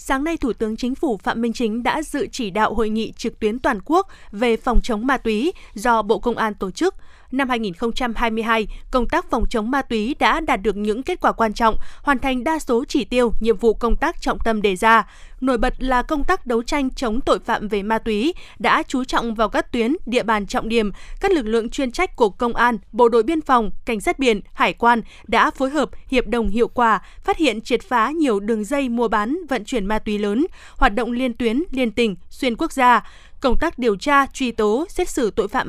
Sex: female